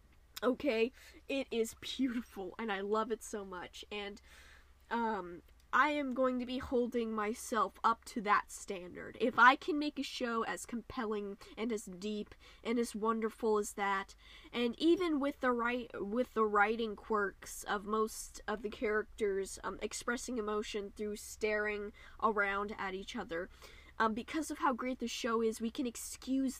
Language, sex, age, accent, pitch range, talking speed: English, female, 10-29, American, 205-255 Hz, 165 wpm